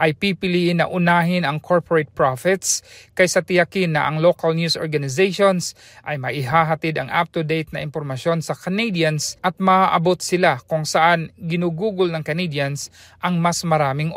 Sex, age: male, 40-59